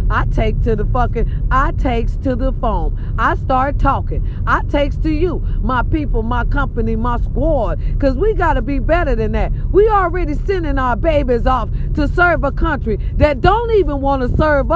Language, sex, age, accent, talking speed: English, female, 40-59, American, 190 wpm